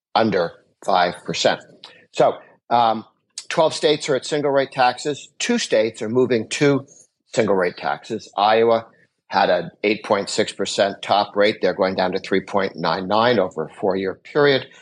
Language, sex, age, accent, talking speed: English, male, 60-79, American, 140 wpm